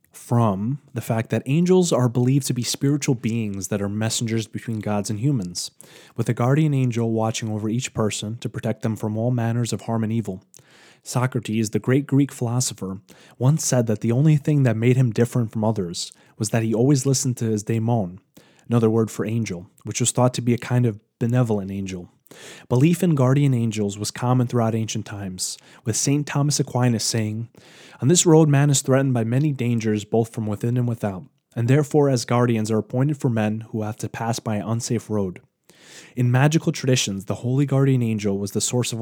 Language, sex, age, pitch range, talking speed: English, male, 30-49, 110-130 Hz, 200 wpm